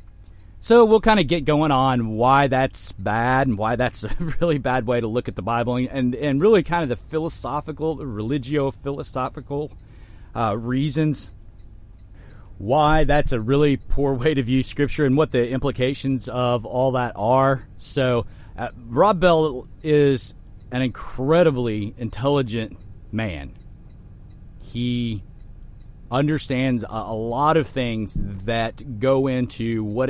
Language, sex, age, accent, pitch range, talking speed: English, male, 40-59, American, 110-145 Hz, 140 wpm